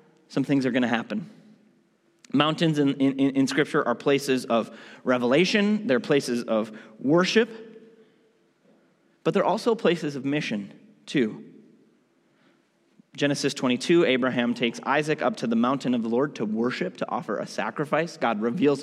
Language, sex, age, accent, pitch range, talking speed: English, male, 30-49, American, 140-190 Hz, 145 wpm